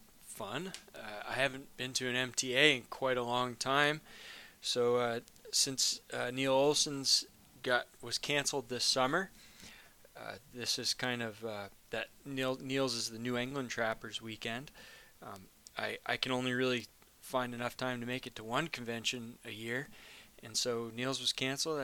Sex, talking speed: male, 170 wpm